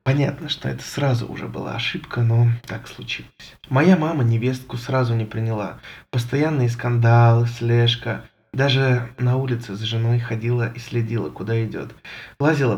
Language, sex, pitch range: Russian, male, 115-135 Hz